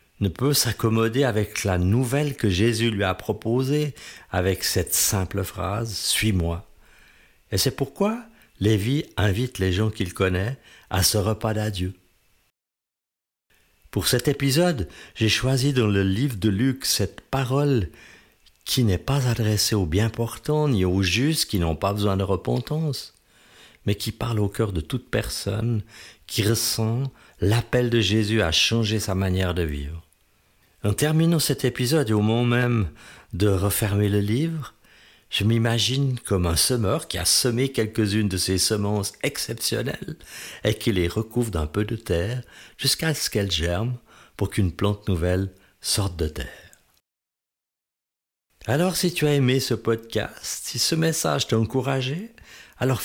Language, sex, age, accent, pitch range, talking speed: French, male, 50-69, French, 95-125 Hz, 150 wpm